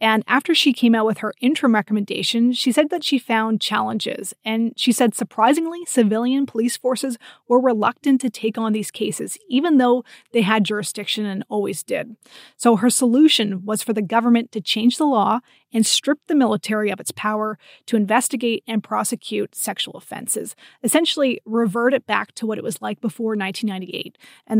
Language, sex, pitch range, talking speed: English, female, 215-255 Hz, 180 wpm